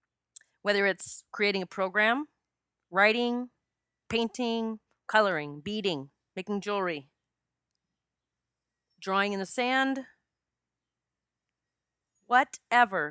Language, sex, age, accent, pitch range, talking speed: English, female, 30-49, American, 175-230 Hz, 75 wpm